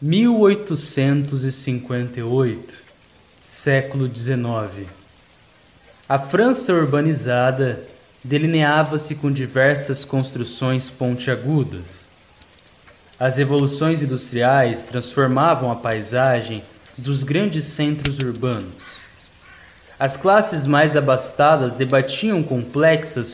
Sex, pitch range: male, 125-155 Hz